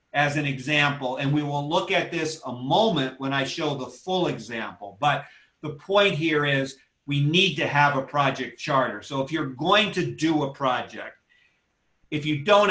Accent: American